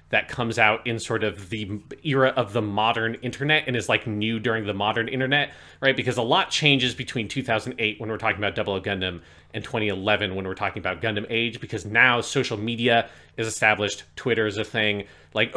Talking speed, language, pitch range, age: 200 wpm, English, 105-130 Hz, 30-49